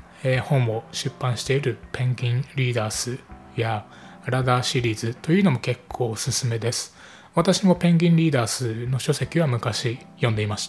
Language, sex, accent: Japanese, male, native